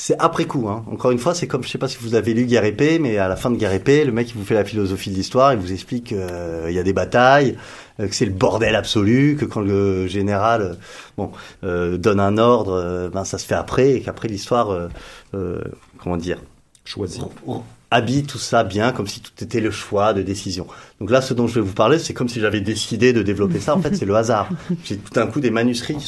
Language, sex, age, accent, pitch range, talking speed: French, male, 30-49, French, 100-135 Hz, 260 wpm